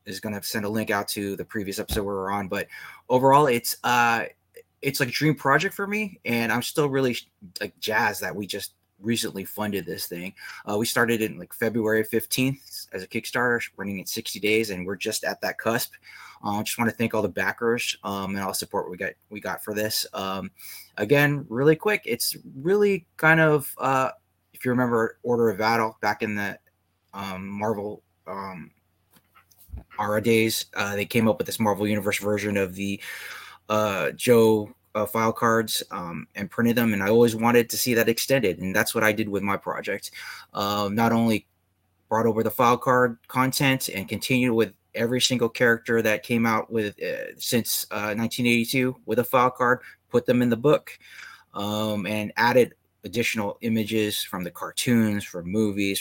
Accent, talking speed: American, 190 wpm